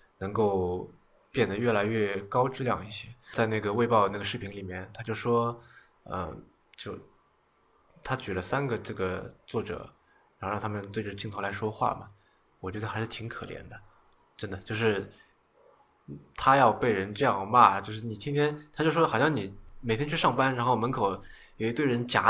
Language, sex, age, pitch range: Chinese, male, 20-39, 100-125 Hz